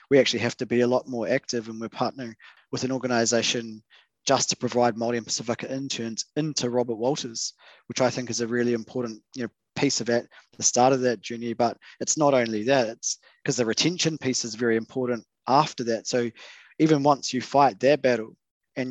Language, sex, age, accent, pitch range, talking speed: English, male, 20-39, Australian, 115-130 Hz, 205 wpm